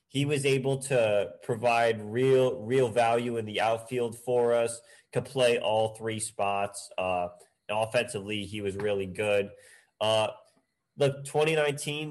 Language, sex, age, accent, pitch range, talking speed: English, male, 30-49, American, 100-125 Hz, 135 wpm